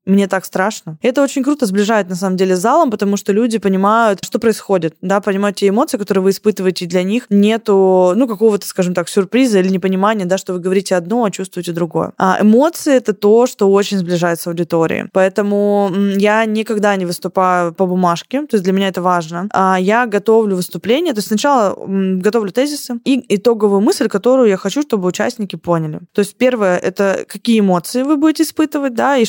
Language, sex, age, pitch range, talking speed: Russian, female, 20-39, 190-225 Hz, 195 wpm